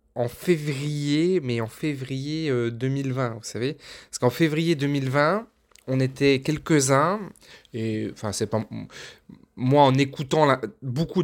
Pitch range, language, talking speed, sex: 120-150 Hz, French, 125 wpm, male